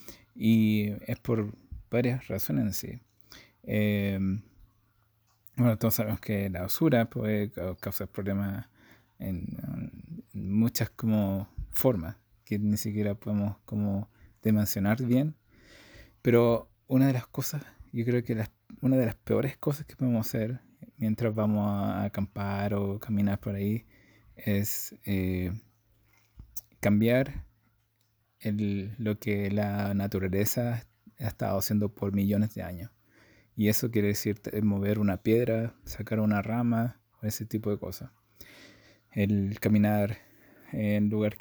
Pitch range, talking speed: 100-115 Hz, 125 wpm